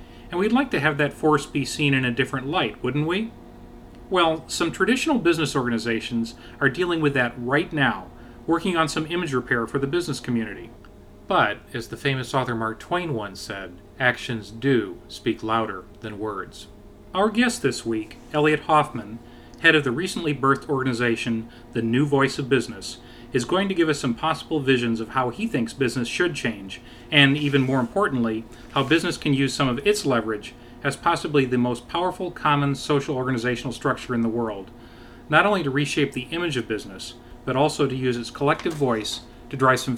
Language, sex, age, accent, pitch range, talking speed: English, male, 40-59, American, 120-150 Hz, 185 wpm